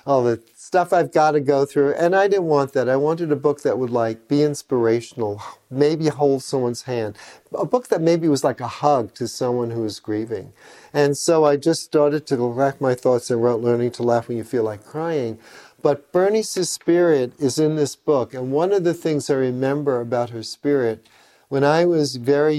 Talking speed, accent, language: 210 wpm, American, English